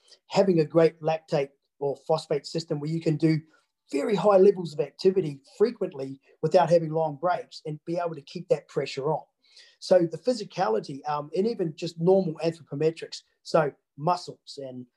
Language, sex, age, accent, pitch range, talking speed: English, male, 40-59, Australian, 150-185 Hz, 165 wpm